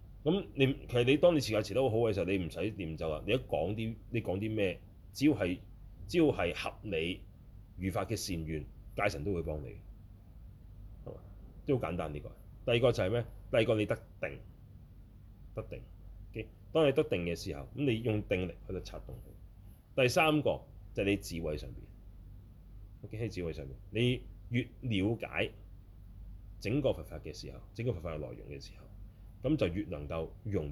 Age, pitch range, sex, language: 30-49, 90-110 Hz, male, Chinese